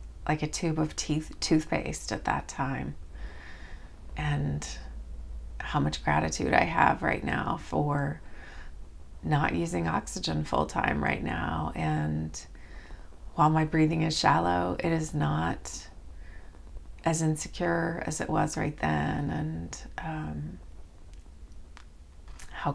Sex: female